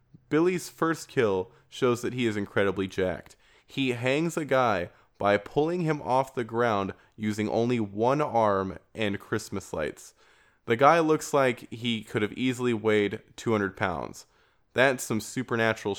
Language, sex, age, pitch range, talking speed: English, male, 20-39, 105-135 Hz, 150 wpm